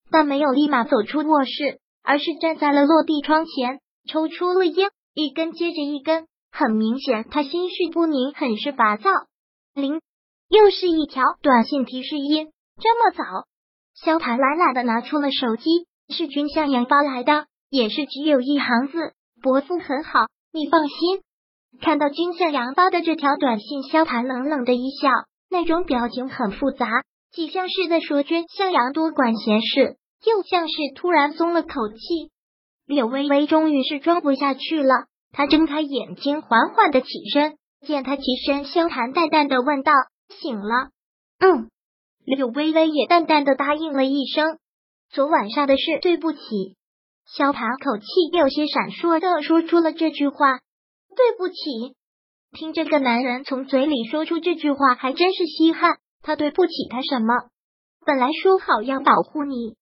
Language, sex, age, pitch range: Chinese, male, 20-39, 265-325 Hz